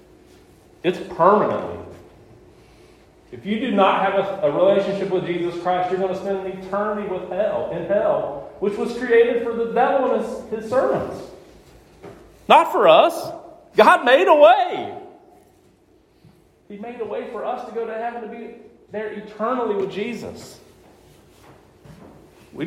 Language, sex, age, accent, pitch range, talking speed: English, male, 40-59, American, 195-275 Hz, 145 wpm